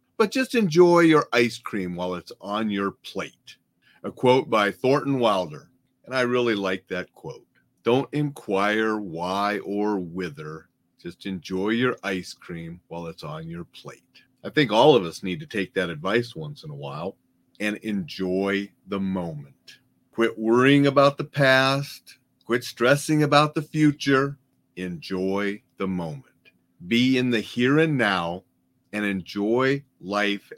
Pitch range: 95-130 Hz